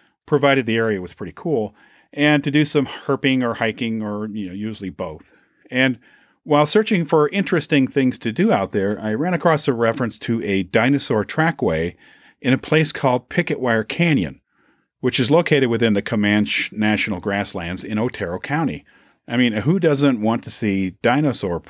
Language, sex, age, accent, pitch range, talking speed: English, male, 40-59, American, 105-145 Hz, 170 wpm